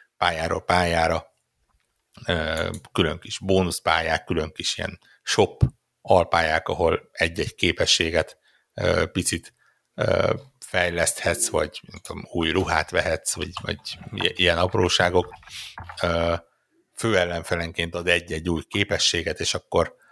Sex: male